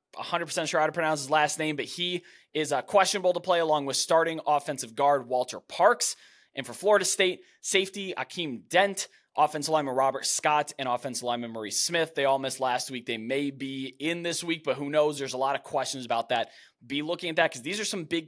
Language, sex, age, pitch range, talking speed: English, male, 20-39, 145-190 Hz, 220 wpm